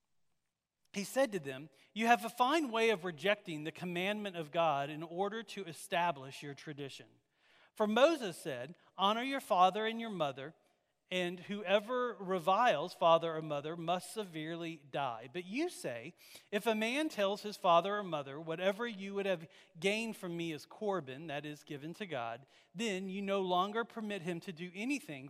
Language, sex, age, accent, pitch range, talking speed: English, male, 40-59, American, 165-220 Hz, 175 wpm